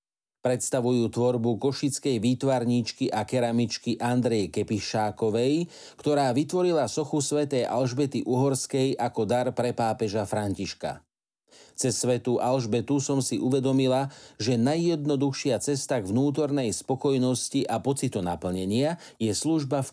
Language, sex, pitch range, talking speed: Slovak, male, 115-140 Hz, 110 wpm